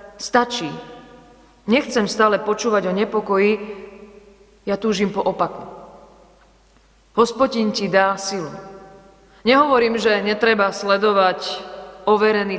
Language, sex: Slovak, female